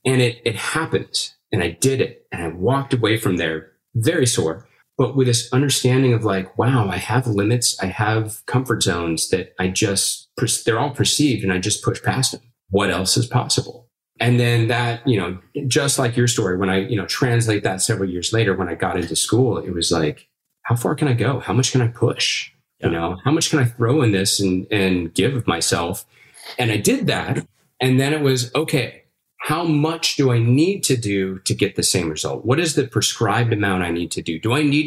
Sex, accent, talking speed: male, American, 220 wpm